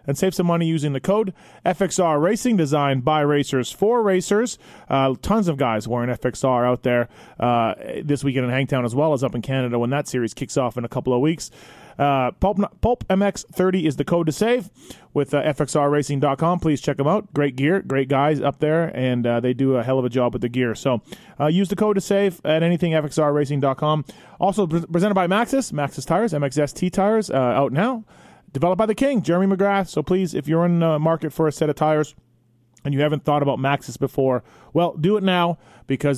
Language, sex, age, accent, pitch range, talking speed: English, male, 30-49, American, 135-185 Hz, 215 wpm